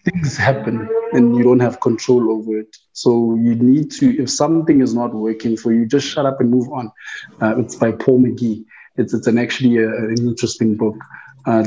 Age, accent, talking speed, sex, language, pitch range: 20-39, South African, 205 wpm, male, English, 110-120 Hz